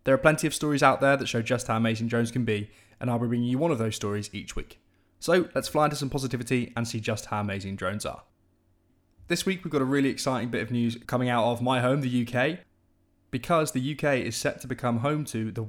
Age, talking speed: 20-39, 255 wpm